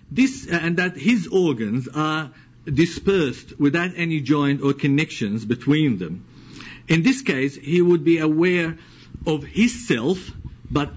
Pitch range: 125-165 Hz